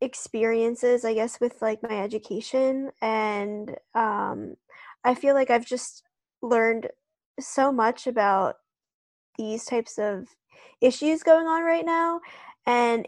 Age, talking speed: 20-39, 125 wpm